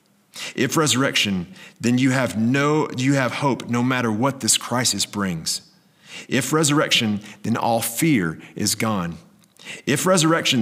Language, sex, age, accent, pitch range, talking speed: English, male, 40-59, American, 100-150 Hz, 135 wpm